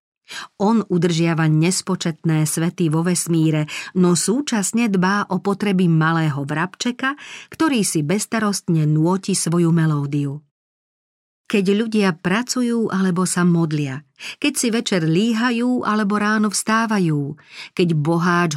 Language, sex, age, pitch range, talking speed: Slovak, female, 40-59, 160-205 Hz, 110 wpm